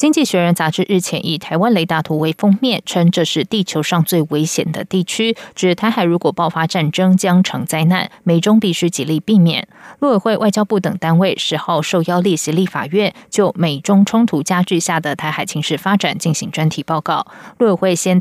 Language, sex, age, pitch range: English, female, 20-39, 160-205 Hz